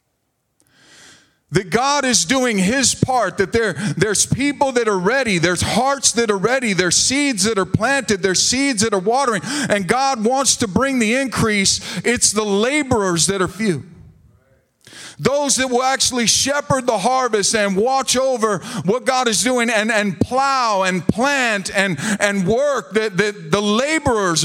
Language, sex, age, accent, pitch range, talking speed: English, male, 50-69, American, 185-235 Hz, 165 wpm